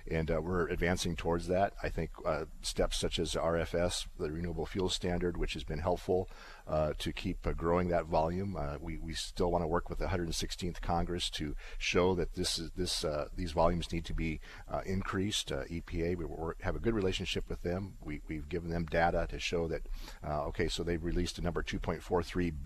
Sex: male